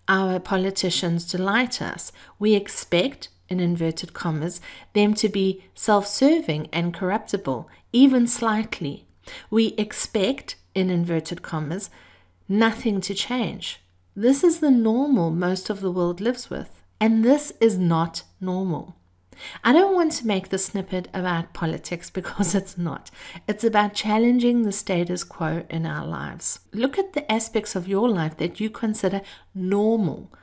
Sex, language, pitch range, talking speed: female, English, 170-220 Hz, 140 wpm